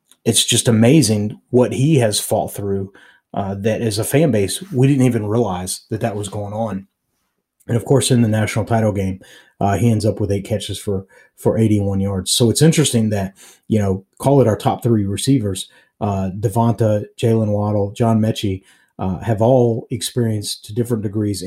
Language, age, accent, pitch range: English, 30-49, American, 100-120 Hz